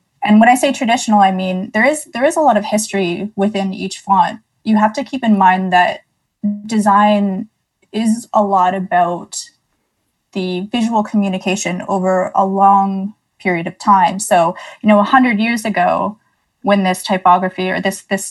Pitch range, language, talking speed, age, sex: 185-215 Hz, English, 170 wpm, 20-39, female